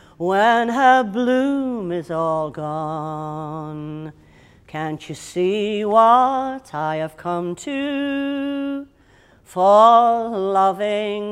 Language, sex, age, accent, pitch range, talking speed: English, female, 40-59, British, 170-250 Hz, 85 wpm